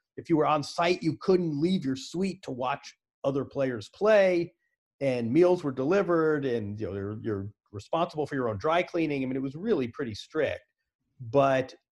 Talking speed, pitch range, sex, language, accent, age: 180 wpm, 125-160 Hz, male, English, American, 40-59